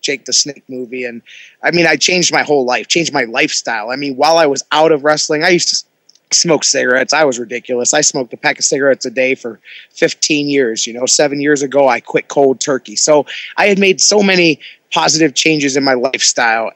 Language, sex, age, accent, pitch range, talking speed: English, male, 20-39, American, 135-170 Hz, 220 wpm